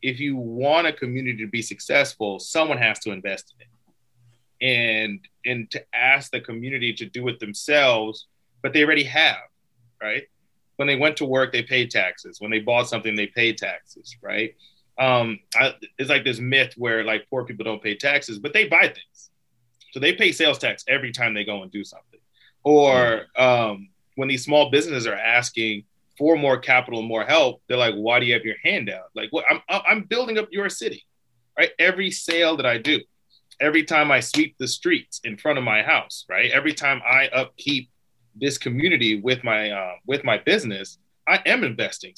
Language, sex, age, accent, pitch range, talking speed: English, male, 30-49, American, 115-145 Hz, 195 wpm